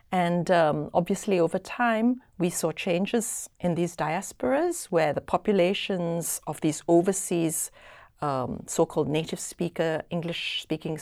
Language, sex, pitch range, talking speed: English, female, 155-195 Hz, 120 wpm